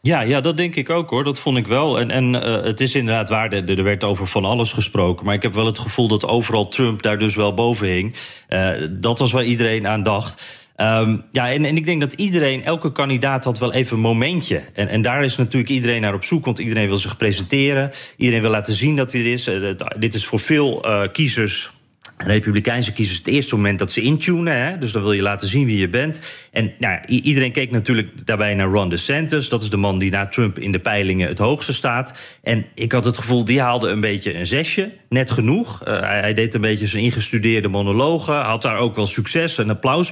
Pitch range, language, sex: 105-135 Hz, Dutch, male